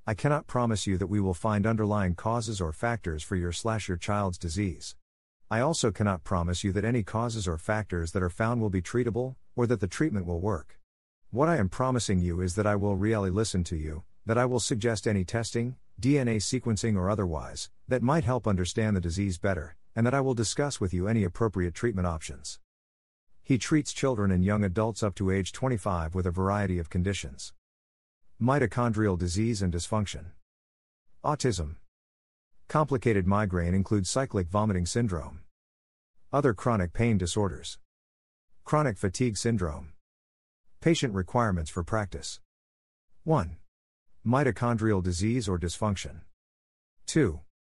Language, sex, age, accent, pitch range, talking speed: English, male, 50-69, American, 85-115 Hz, 155 wpm